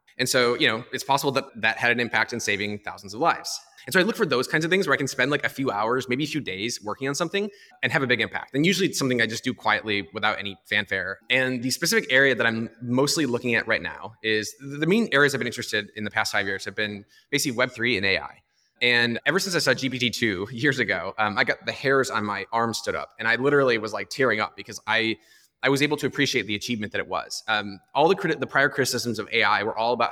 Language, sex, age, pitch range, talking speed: English, male, 20-39, 110-140 Hz, 265 wpm